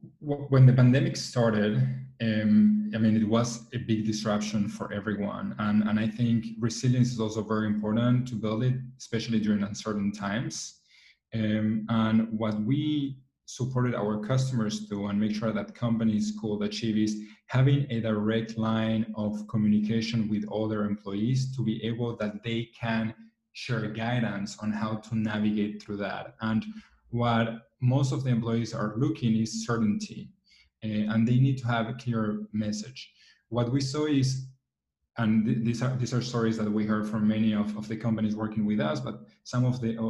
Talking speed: 170 wpm